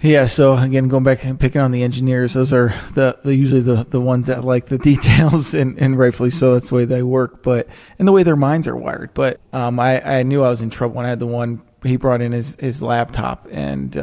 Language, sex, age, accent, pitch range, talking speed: English, male, 20-39, American, 120-135 Hz, 250 wpm